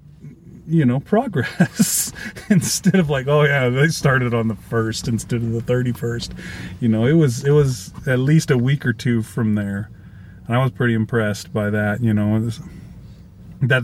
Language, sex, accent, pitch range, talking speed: English, male, American, 120-160 Hz, 180 wpm